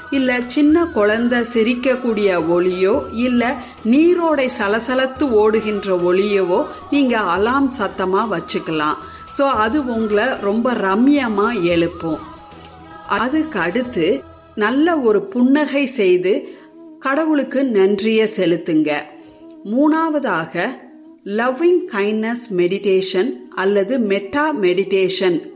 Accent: native